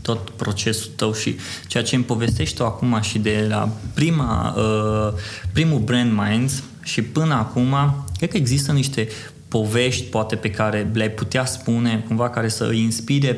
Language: Romanian